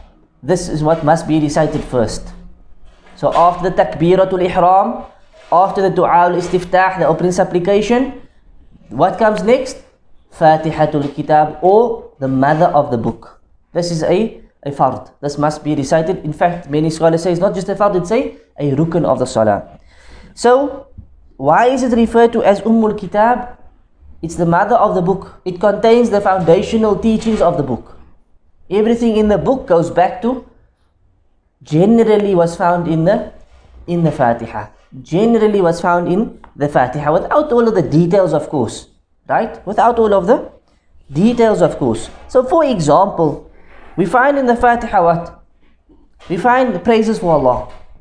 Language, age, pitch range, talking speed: English, 20-39, 150-220 Hz, 160 wpm